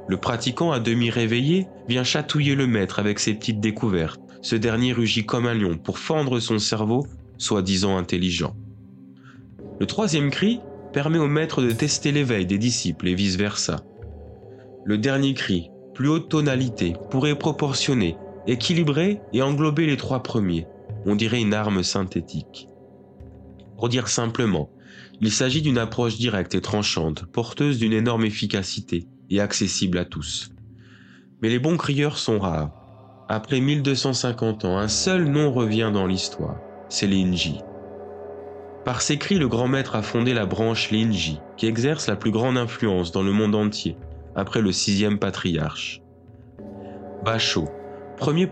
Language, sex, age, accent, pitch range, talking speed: French, male, 20-39, French, 95-130 Hz, 145 wpm